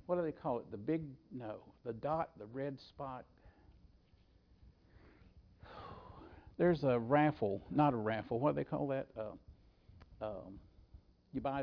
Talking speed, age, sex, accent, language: 145 wpm, 60-79, male, American, English